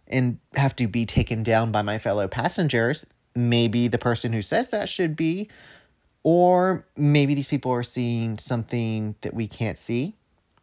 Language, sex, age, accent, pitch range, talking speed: English, male, 30-49, American, 110-150 Hz, 165 wpm